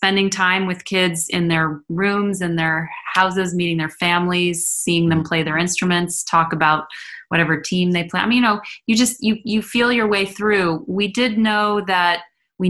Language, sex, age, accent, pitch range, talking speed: English, female, 30-49, American, 165-190 Hz, 195 wpm